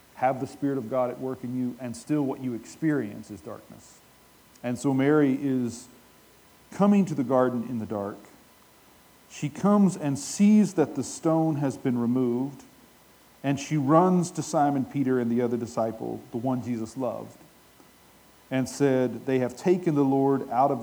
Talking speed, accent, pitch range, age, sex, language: 175 wpm, American, 120-145 Hz, 40-59, male, English